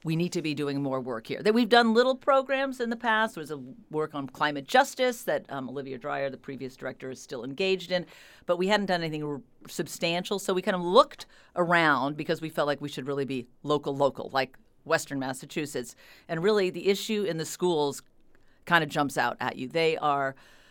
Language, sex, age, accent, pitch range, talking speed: English, female, 50-69, American, 145-195 Hz, 215 wpm